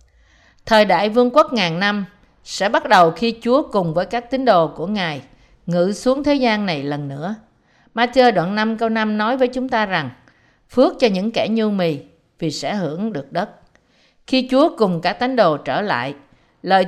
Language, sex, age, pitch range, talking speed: Vietnamese, female, 50-69, 160-235 Hz, 195 wpm